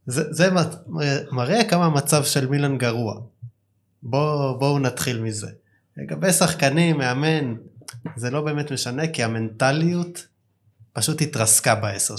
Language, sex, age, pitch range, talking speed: Hebrew, male, 20-39, 110-150 Hz, 120 wpm